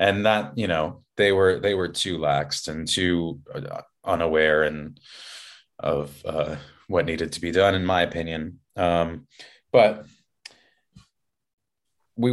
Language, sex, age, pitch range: English, male, 30-49, 80-95 Hz